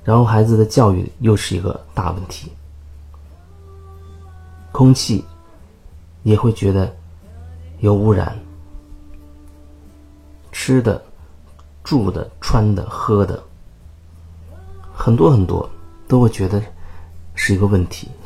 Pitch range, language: 80-105 Hz, Chinese